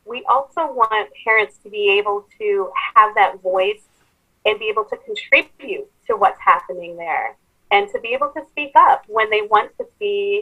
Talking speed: 185 wpm